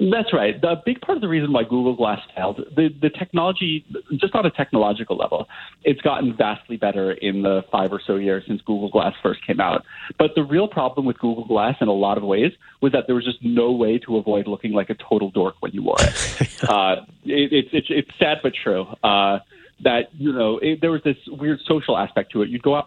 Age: 30-49